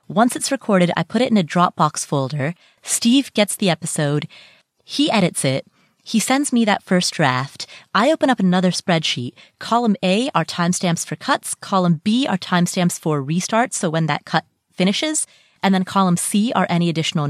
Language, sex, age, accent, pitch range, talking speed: English, female, 30-49, American, 170-225 Hz, 180 wpm